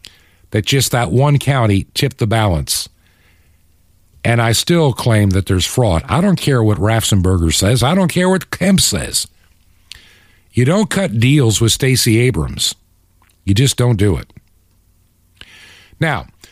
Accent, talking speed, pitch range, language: American, 145 wpm, 100-160 Hz, English